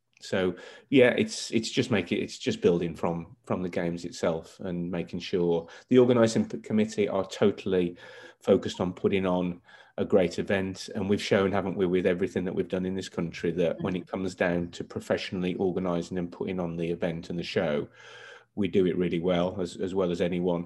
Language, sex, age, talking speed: English, male, 30-49, 200 wpm